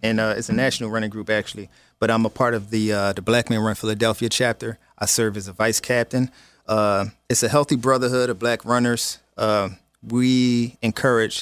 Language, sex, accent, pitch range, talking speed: English, male, American, 95-115 Hz, 200 wpm